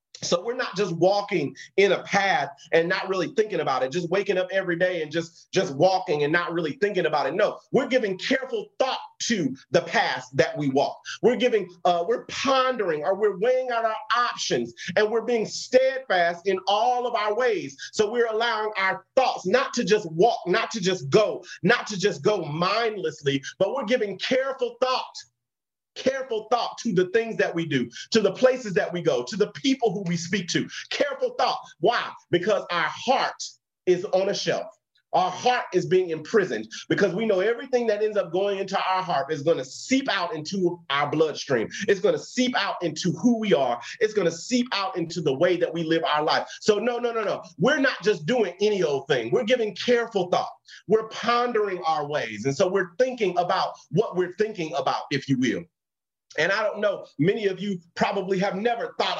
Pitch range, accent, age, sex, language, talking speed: 175-240 Hz, American, 40-59, male, English, 205 wpm